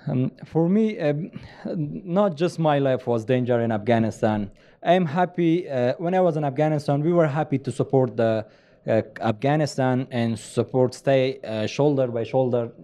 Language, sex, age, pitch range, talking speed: English, male, 20-39, 120-150 Hz, 165 wpm